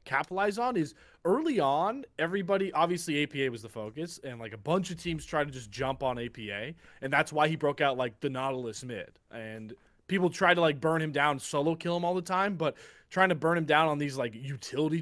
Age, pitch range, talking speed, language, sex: 20-39, 130-170 Hz, 230 wpm, English, male